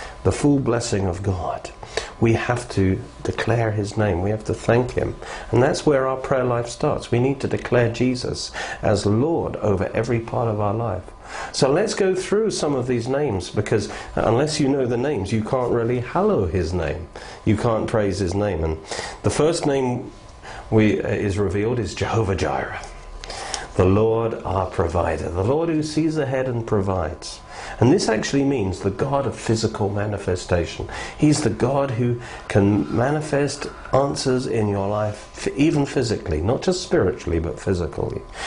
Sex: male